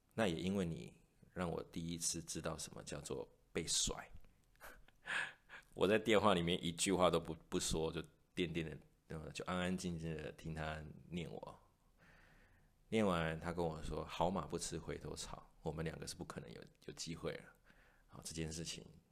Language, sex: Chinese, male